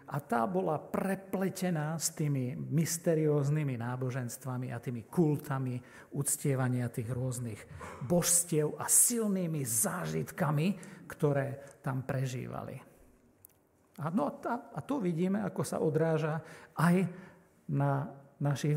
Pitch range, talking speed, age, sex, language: 130-160 Hz, 100 wpm, 50-69, male, Slovak